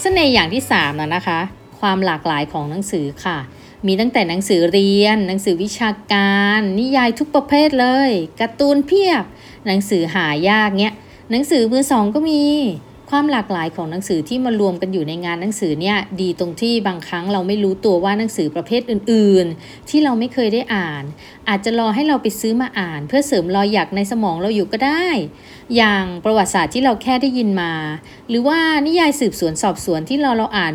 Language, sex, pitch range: Thai, female, 190-270 Hz